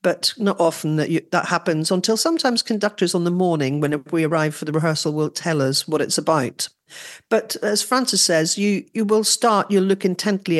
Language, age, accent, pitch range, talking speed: English, 50-69, British, 160-215 Hz, 205 wpm